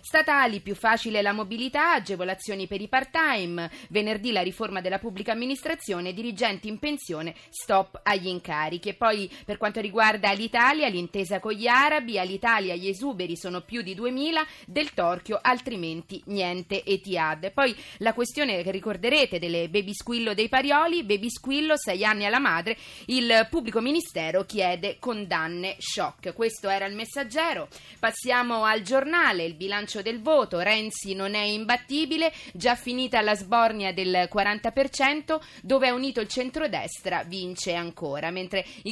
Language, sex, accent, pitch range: Italian, female, native, 185-255 Hz